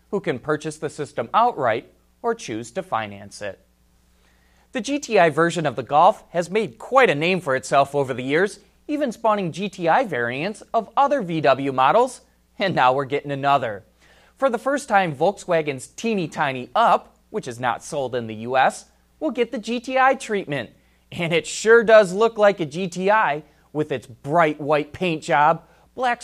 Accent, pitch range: American, 140-215 Hz